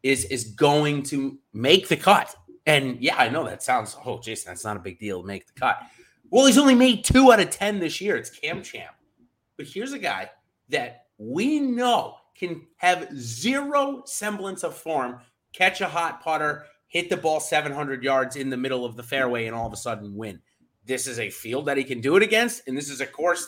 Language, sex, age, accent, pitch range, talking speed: English, male, 30-49, American, 120-180 Hz, 220 wpm